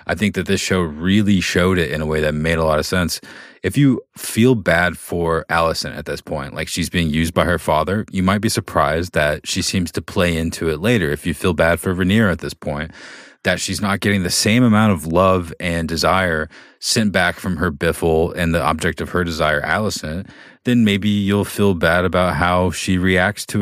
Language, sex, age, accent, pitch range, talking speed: English, male, 30-49, American, 80-100 Hz, 220 wpm